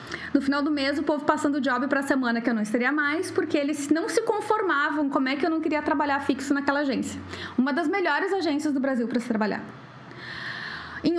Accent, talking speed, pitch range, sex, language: Brazilian, 225 wpm, 240-315 Hz, female, Portuguese